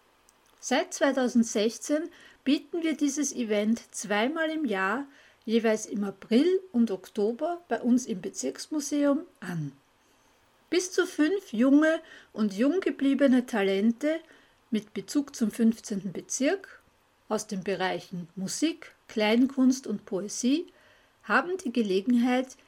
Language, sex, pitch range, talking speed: German, female, 210-285 Hz, 110 wpm